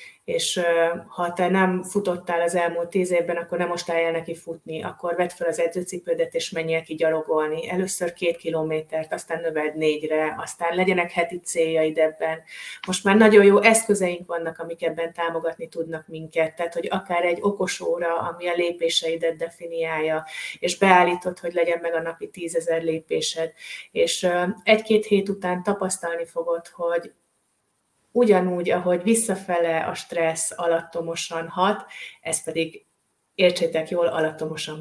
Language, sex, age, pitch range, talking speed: Hungarian, female, 30-49, 165-190 Hz, 145 wpm